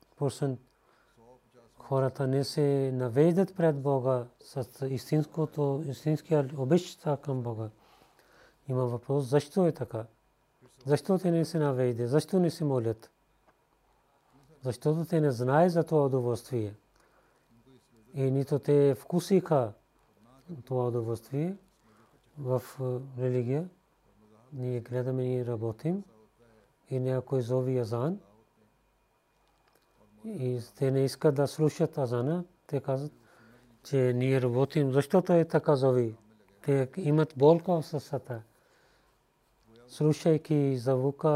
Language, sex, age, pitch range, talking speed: Bulgarian, male, 40-59, 120-145 Hz, 105 wpm